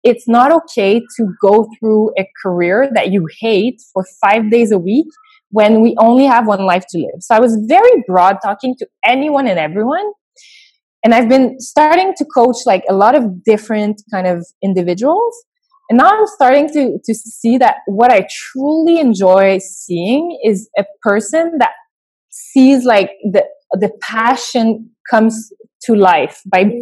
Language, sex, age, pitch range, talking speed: English, female, 20-39, 195-270 Hz, 165 wpm